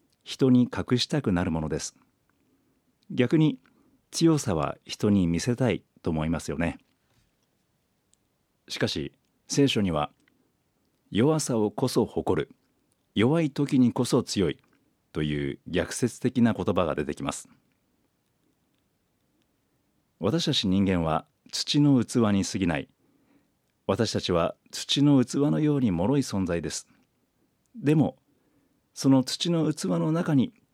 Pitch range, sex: 90-135 Hz, male